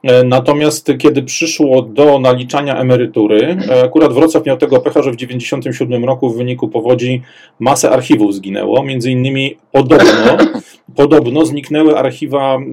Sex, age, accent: male, 40-59, native